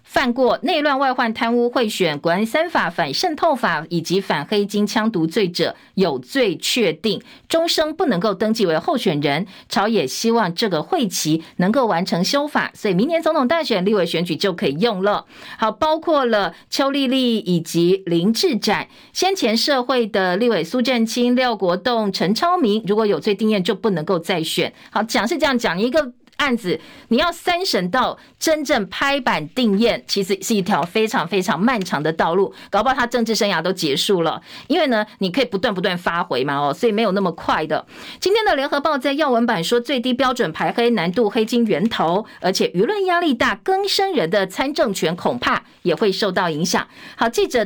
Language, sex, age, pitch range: Chinese, female, 50-69, 195-270 Hz